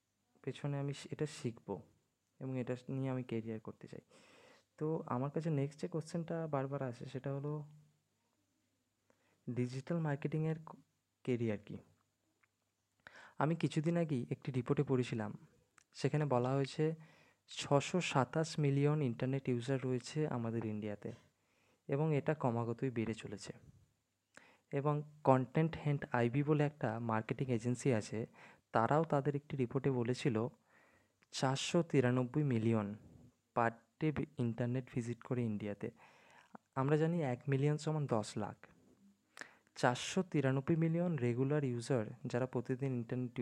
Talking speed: 115 wpm